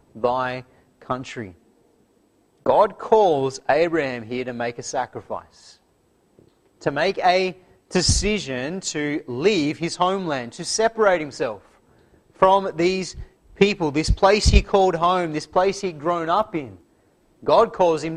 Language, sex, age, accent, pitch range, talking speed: English, male, 30-49, Australian, 135-180 Hz, 125 wpm